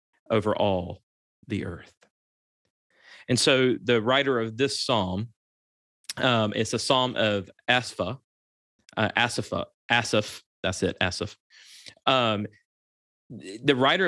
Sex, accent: male, American